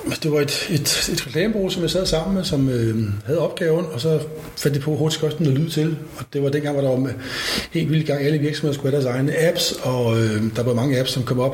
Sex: male